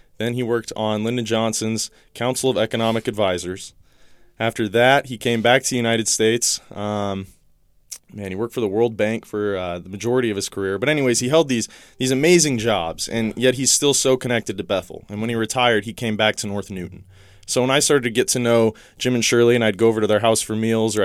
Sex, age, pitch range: male, 20-39, 100-120 Hz